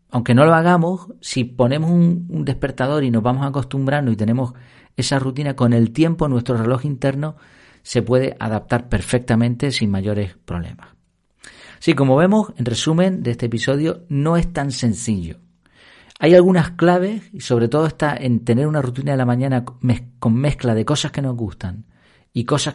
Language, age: Spanish, 40-59